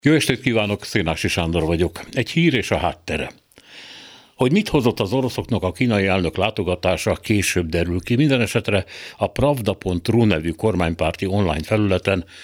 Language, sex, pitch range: Hungarian, male, 90-115 Hz